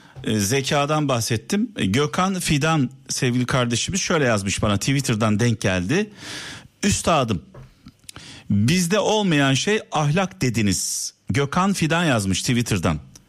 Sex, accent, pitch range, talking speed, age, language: male, native, 115-170 Hz, 100 wpm, 50-69, Turkish